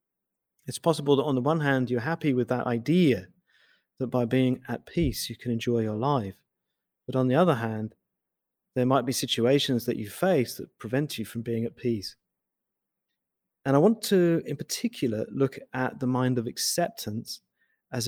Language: English